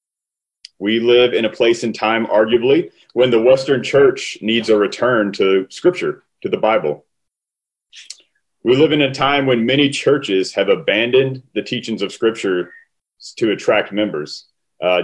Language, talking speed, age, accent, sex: English, 150 wpm, 30-49, American, male